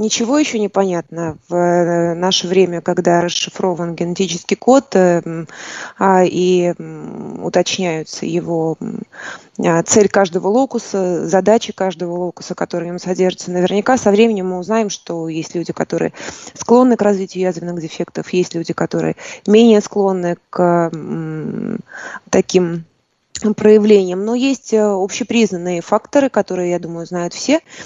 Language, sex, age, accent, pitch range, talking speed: Russian, female, 20-39, native, 175-215 Hz, 115 wpm